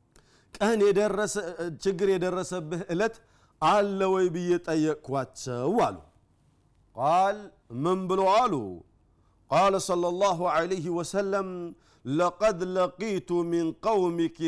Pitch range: 165-210 Hz